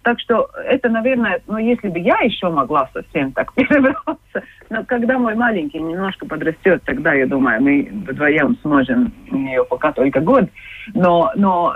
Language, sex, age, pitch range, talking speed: Russian, female, 30-49, 170-250 Hz, 165 wpm